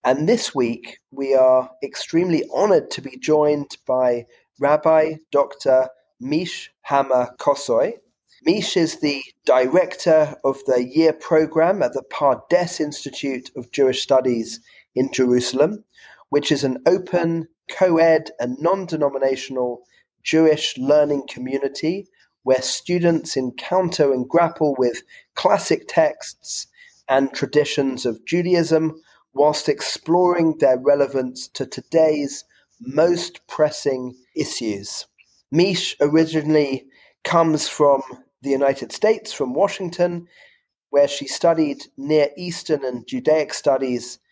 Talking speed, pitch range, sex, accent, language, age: 110 wpm, 130-165 Hz, male, British, English, 30-49